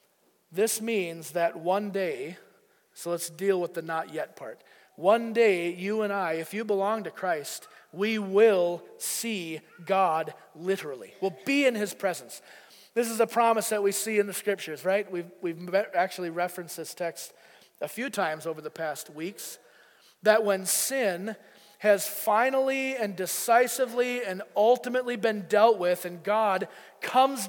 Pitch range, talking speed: 175-225 Hz, 155 wpm